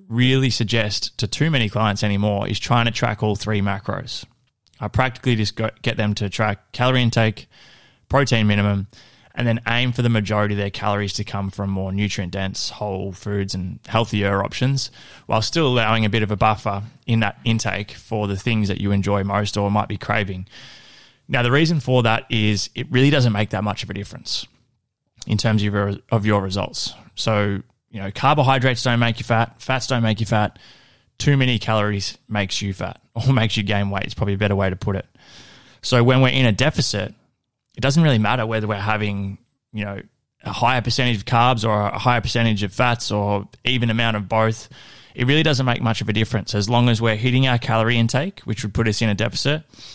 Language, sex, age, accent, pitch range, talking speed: English, male, 20-39, Australian, 105-125 Hz, 210 wpm